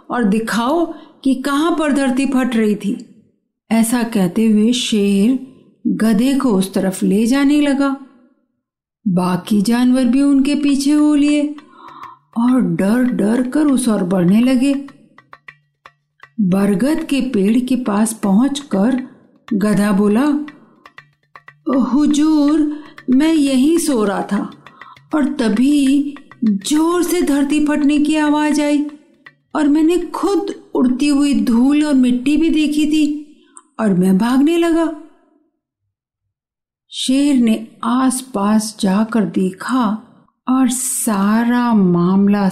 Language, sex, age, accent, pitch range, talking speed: Hindi, female, 50-69, native, 215-290 Hz, 115 wpm